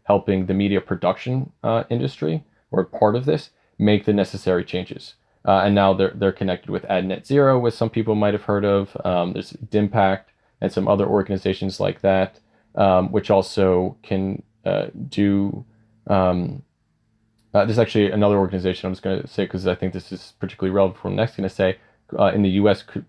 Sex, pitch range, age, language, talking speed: male, 95-110 Hz, 20-39, English, 195 wpm